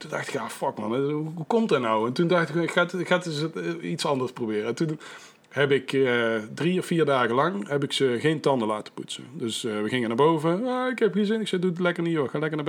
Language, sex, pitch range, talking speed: Dutch, male, 125-170 Hz, 290 wpm